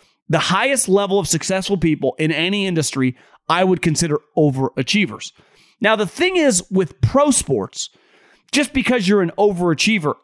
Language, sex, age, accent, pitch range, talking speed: English, male, 30-49, American, 170-220 Hz, 145 wpm